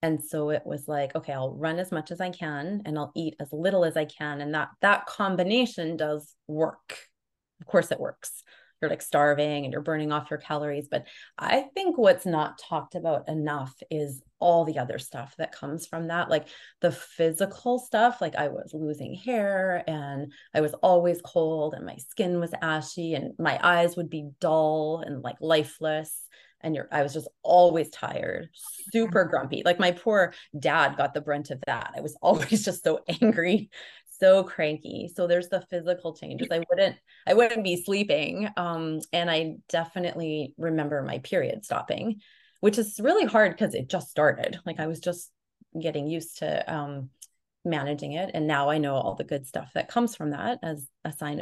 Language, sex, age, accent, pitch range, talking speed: English, female, 30-49, American, 150-185 Hz, 190 wpm